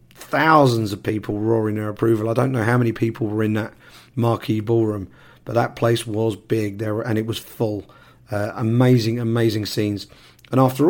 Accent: British